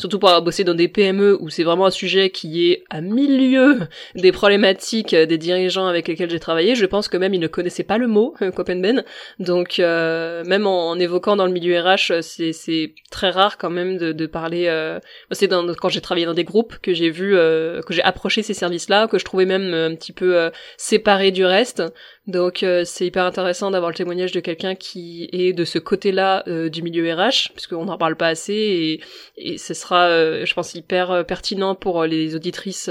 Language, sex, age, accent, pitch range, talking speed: French, female, 20-39, French, 170-195 Hz, 220 wpm